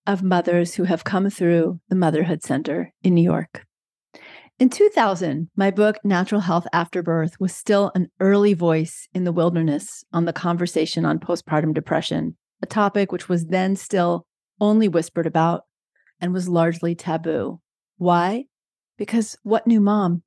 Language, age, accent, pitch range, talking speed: English, 40-59, American, 170-210 Hz, 155 wpm